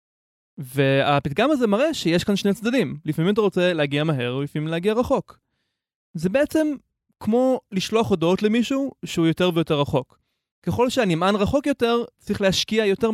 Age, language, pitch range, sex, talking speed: 20-39, Hebrew, 150-215 Hz, male, 145 wpm